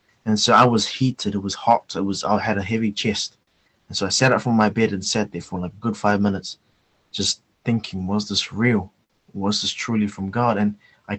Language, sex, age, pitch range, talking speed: English, male, 20-39, 100-110 Hz, 235 wpm